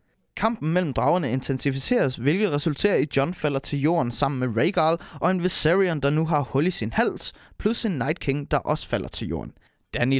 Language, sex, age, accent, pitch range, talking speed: Danish, male, 20-39, native, 125-165 Hz, 205 wpm